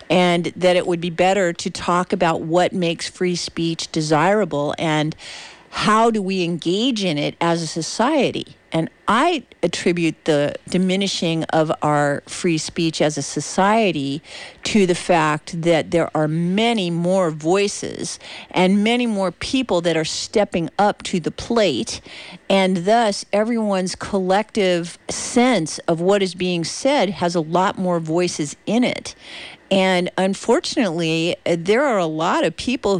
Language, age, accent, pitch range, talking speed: English, 50-69, American, 170-220 Hz, 145 wpm